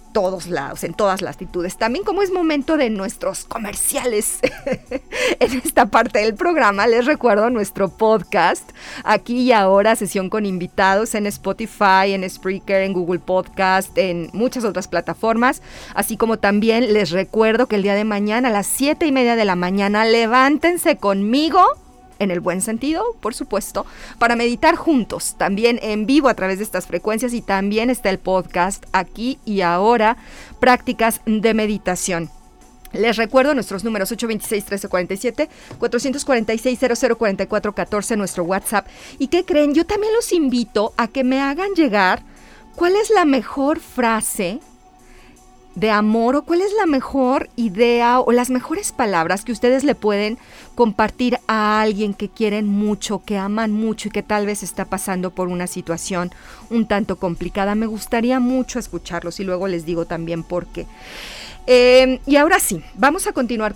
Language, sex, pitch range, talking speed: Spanish, female, 195-250 Hz, 160 wpm